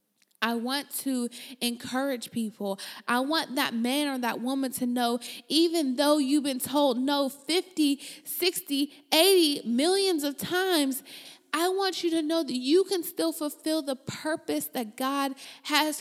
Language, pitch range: English, 245-315 Hz